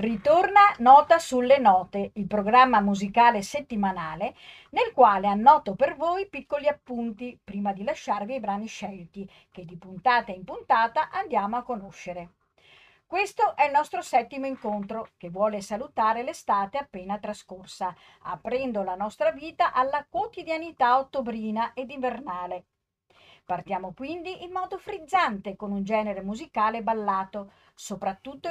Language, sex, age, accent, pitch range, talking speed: Italian, female, 40-59, native, 195-295 Hz, 130 wpm